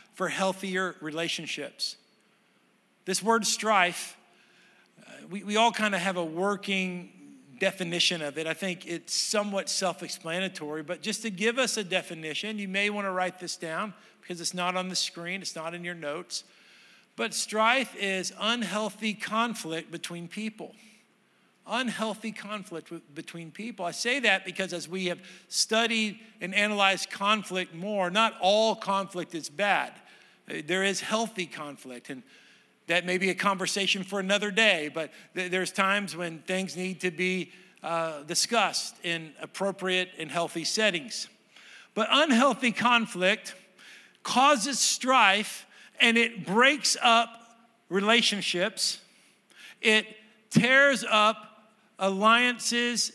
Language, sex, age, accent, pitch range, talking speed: English, male, 50-69, American, 180-225 Hz, 135 wpm